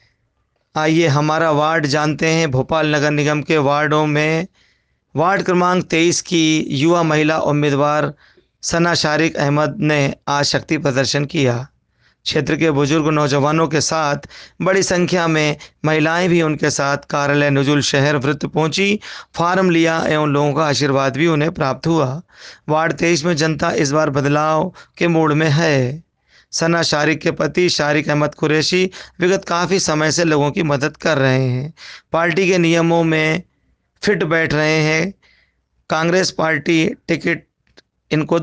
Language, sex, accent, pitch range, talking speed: Hindi, male, native, 145-170 Hz, 150 wpm